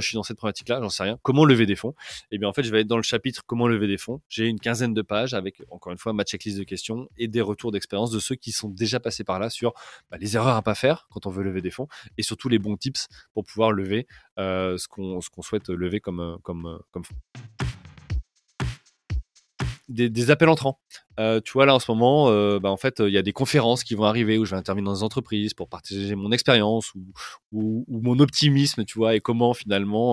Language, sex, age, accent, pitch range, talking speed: French, male, 20-39, French, 100-120 Hz, 255 wpm